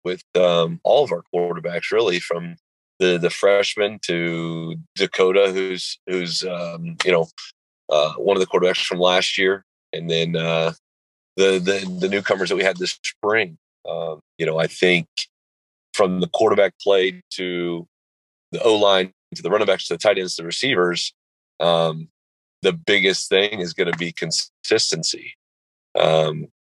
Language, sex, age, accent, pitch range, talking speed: English, male, 30-49, American, 80-90 Hz, 160 wpm